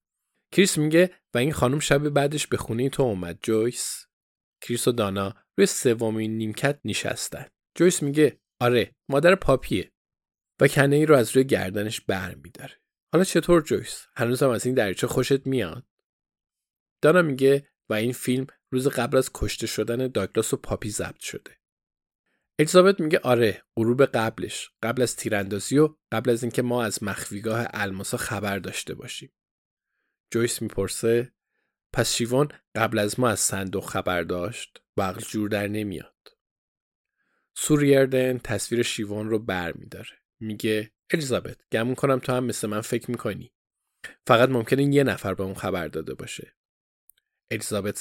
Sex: male